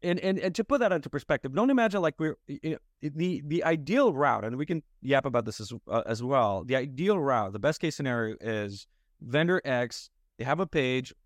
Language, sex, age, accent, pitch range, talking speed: English, male, 20-39, American, 110-150 Hz, 225 wpm